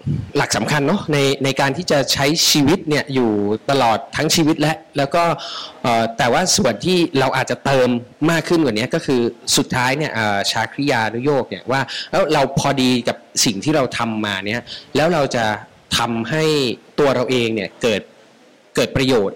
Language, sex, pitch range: Thai, male, 125-160 Hz